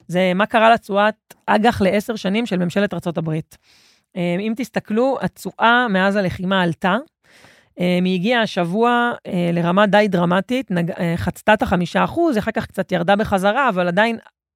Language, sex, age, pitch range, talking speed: Hebrew, female, 30-49, 175-225 Hz, 140 wpm